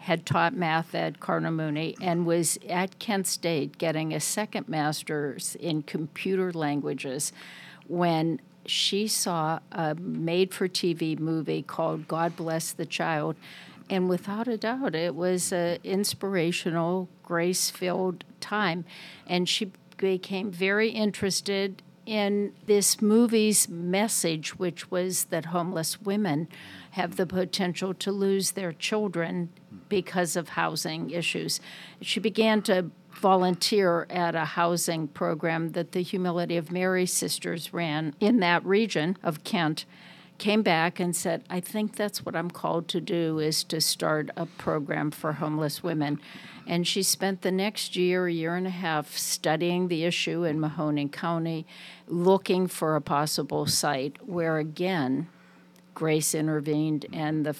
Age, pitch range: 50-69, 160-190 Hz